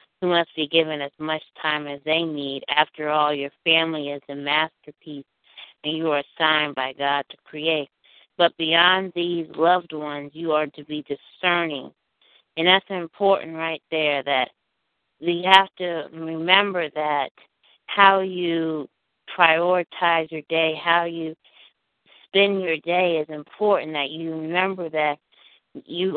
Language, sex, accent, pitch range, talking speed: English, female, American, 155-175 Hz, 145 wpm